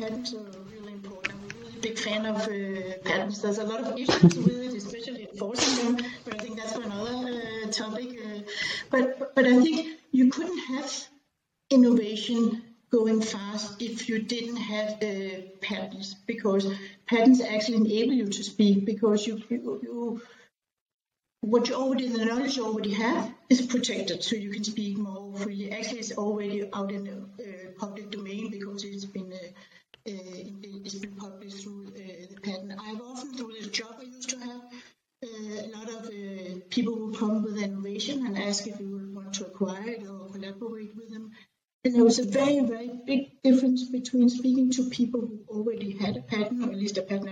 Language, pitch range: English, 200-240 Hz